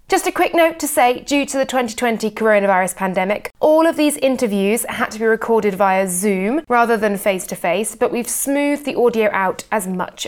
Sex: female